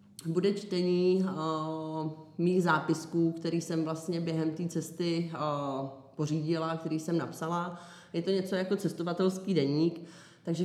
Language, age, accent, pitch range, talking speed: Czech, 20-39, native, 160-180 Hz, 120 wpm